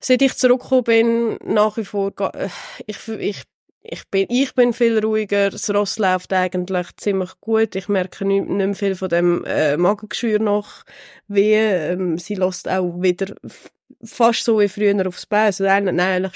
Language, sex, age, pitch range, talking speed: German, female, 20-39, 180-220 Hz, 160 wpm